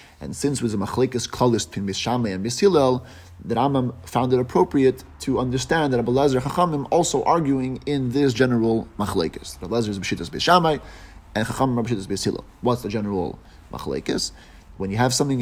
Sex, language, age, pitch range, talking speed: male, English, 30-49, 105-135 Hz, 160 wpm